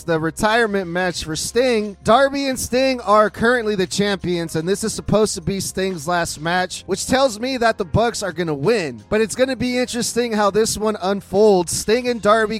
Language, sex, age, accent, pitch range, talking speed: English, male, 30-49, American, 180-220 Hz, 210 wpm